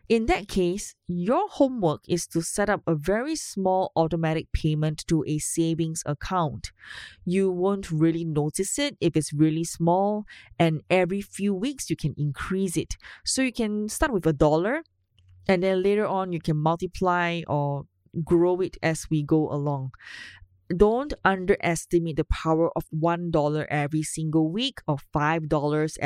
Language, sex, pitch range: English, female, 155-200 Hz